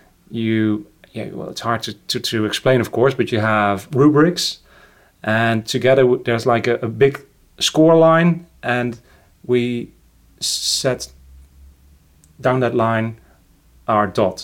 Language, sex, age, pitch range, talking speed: English, male, 30-49, 100-125 Hz, 135 wpm